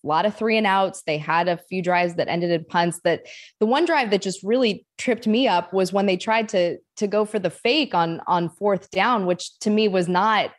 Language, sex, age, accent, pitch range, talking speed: English, female, 20-39, American, 155-195 Hz, 250 wpm